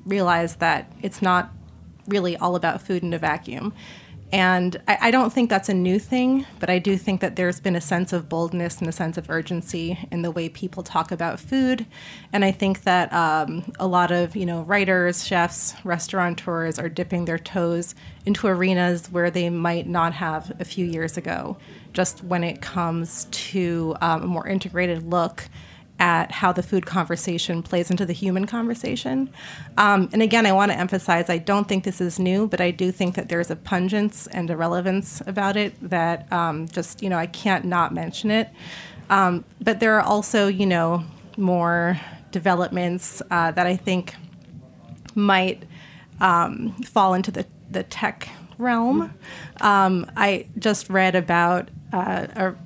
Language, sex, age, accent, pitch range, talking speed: English, female, 30-49, American, 170-195 Hz, 175 wpm